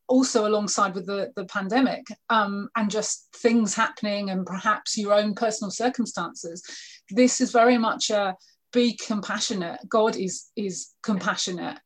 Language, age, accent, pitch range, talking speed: English, 30-49, British, 195-230 Hz, 140 wpm